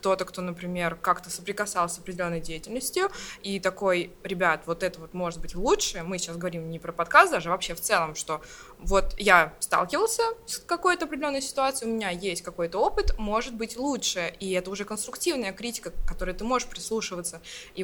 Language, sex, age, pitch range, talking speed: Russian, female, 20-39, 180-225 Hz, 180 wpm